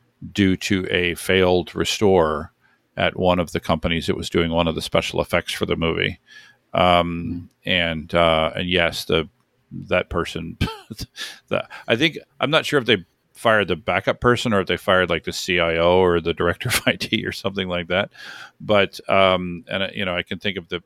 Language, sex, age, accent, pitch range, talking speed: English, male, 40-59, American, 85-100 Hz, 195 wpm